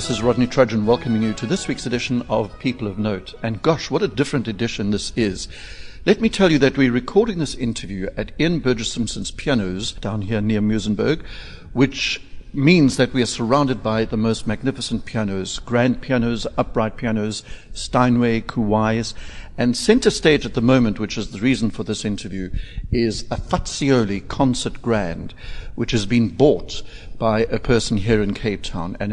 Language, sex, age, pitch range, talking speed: English, male, 60-79, 105-130 Hz, 180 wpm